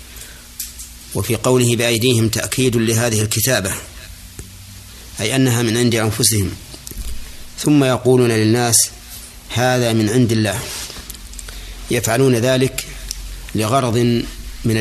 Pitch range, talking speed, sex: 80-120 Hz, 90 wpm, male